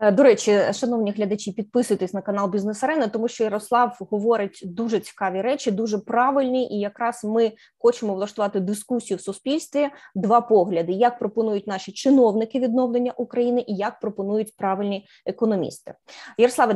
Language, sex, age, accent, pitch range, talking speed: Ukrainian, female, 20-39, native, 200-245 Hz, 140 wpm